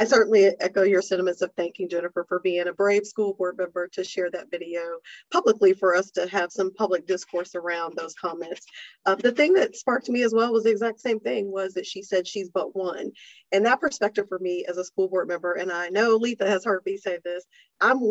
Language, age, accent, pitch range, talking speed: English, 40-59, American, 185-225 Hz, 230 wpm